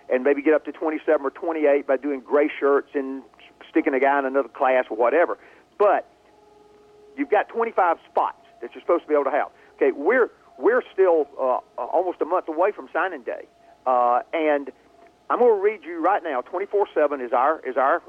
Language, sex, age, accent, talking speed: English, male, 50-69, American, 200 wpm